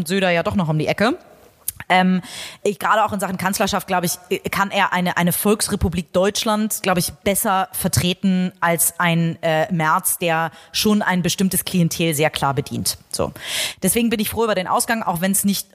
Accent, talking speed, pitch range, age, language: German, 185 wpm, 180-215 Hz, 30-49, German